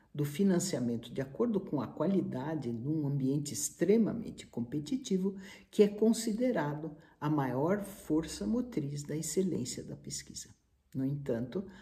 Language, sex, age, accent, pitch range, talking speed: Portuguese, male, 60-79, Brazilian, 135-190 Hz, 120 wpm